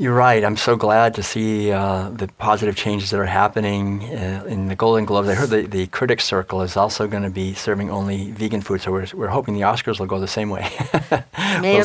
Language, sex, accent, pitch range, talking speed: English, male, American, 105-120 Hz, 240 wpm